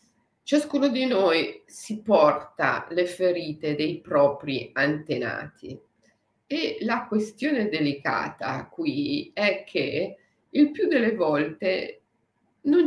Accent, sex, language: native, female, Italian